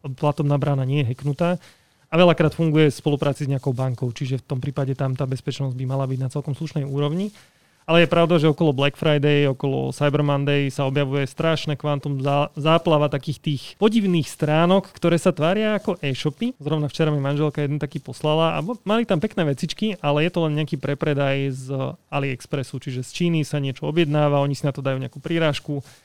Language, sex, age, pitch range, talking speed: Slovak, male, 30-49, 140-165 Hz, 195 wpm